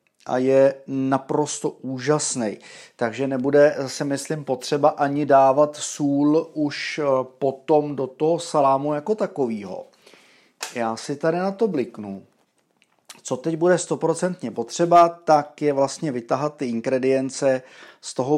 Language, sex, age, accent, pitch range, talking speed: Czech, male, 30-49, native, 130-155 Hz, 125 wpm